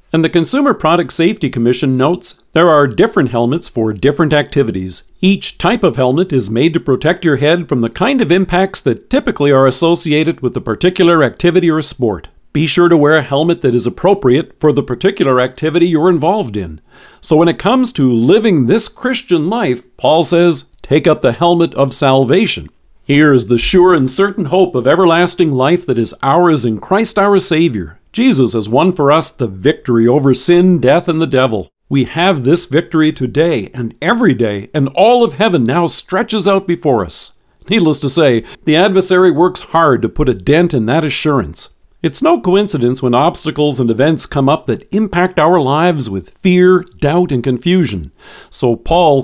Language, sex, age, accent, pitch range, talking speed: English, male, 50-69, American, 125-175 Hz, 185 wpm